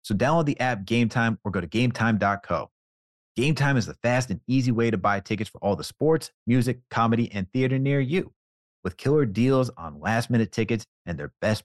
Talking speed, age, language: 200 wpm, 30-49, English